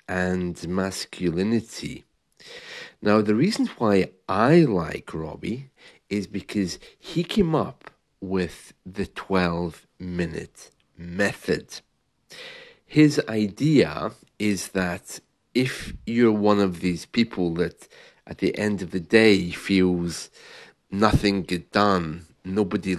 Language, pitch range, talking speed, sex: English, 90-110 Hz, 105 wpm, male